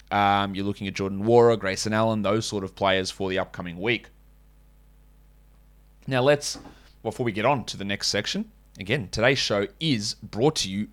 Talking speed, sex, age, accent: 185 wpm, male, 20-39, Australian